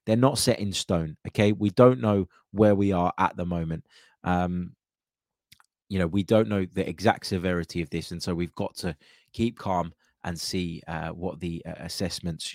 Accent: British